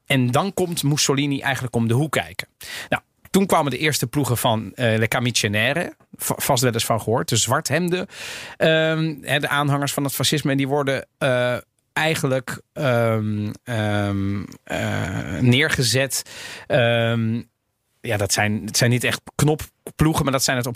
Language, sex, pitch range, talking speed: Dutch, male, 115-145 Hz, 170 wpm